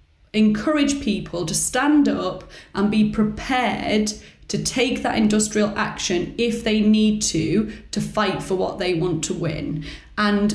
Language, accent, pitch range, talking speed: English, British, 190-235 Hz, 150 wpm